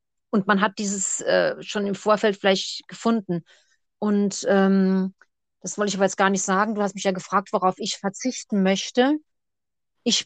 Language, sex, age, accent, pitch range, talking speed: German, female, 30-49, German, 200-235 Hz, 175 wpm